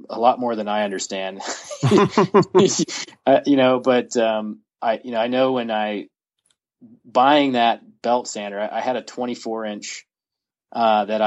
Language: English